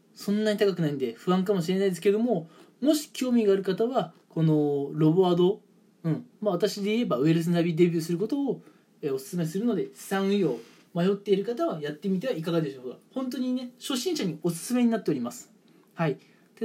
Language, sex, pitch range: Japanese, male, 170-215 Hz